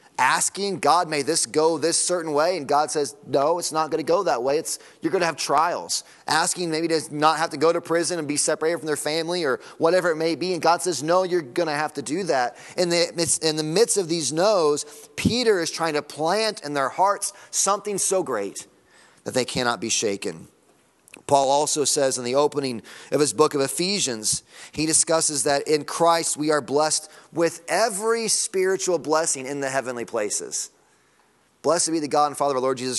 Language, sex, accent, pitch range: English, male, American, 140-175 Hz